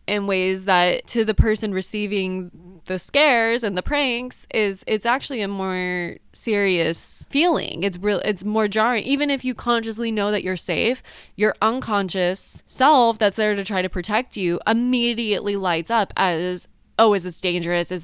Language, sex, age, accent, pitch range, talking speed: English, female, 20-39, American, 170-215 Hz, 170 wpm